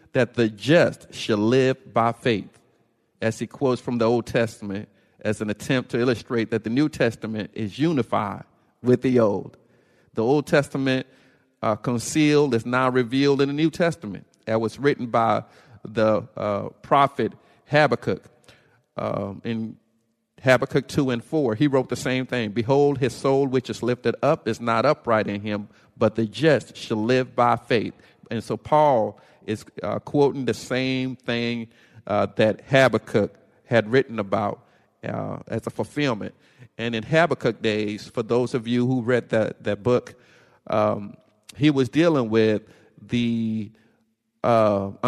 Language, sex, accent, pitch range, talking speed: English, male, American, 110-130 Hz, 155 wpm